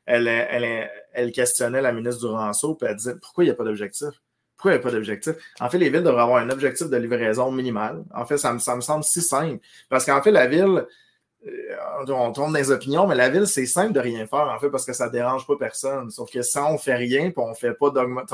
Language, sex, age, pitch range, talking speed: French, male, 30-49, 120-140 Hz, 260 wpm